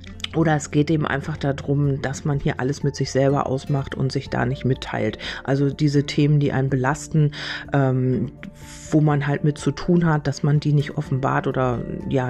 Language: German